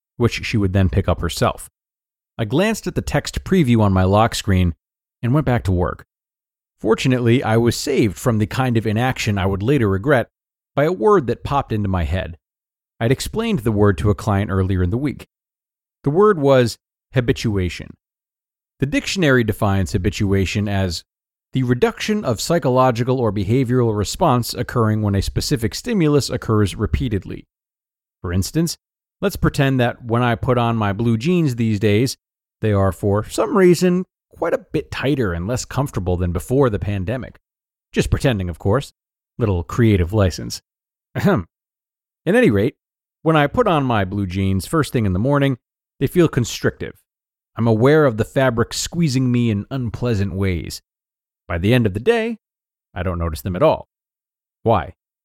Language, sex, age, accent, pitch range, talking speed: English, male, 40-59, American, 100-135 Hz, 170 wpm